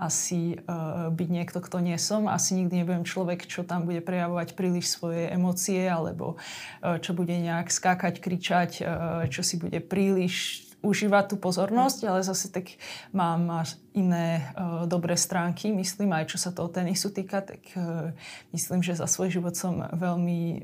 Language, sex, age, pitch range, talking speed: Slovak, female, 20-39, 165-185 Hz, 155 wpm